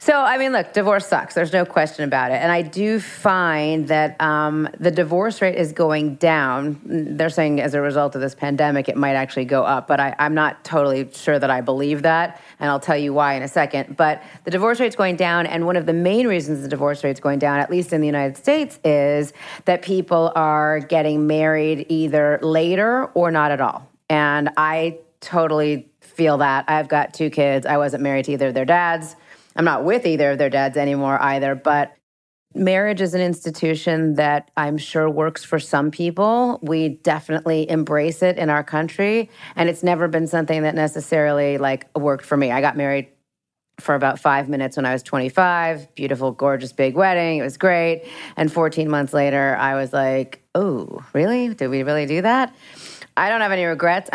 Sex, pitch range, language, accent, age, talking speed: female, 140-170 Hz, English, American, 30-49, 200 wpm